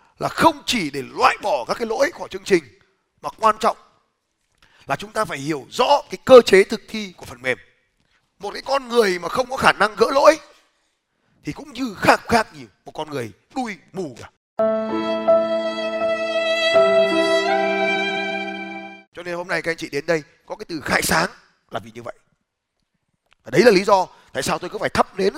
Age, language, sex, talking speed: 20-39, Vietnamese, male, 195 wpm